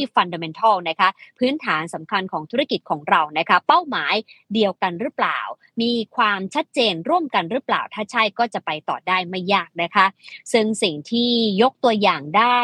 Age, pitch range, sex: 20-39, 180-235 Hz, male